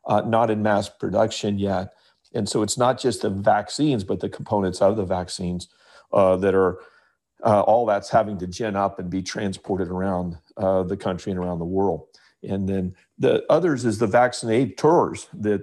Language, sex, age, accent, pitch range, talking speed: English, male, 50-69, American, 95-110 Hz, 185 wpm